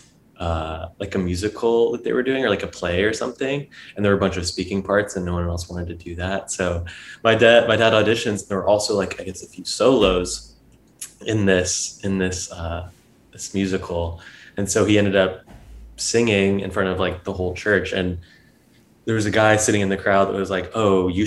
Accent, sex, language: American, male, English